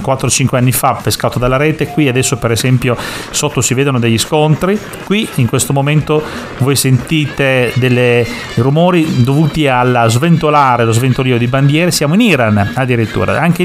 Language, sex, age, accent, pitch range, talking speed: Italian, male, 30-49, native, 120-155 Hz, 155 wpm